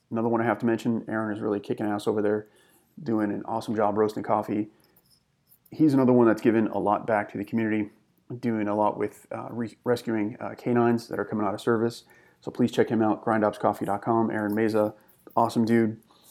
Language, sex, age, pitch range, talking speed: English, male, 30-49, 105-115 Hz, 200 wpm